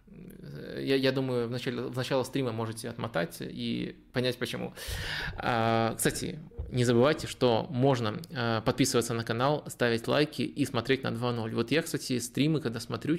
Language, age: Russian, 20-39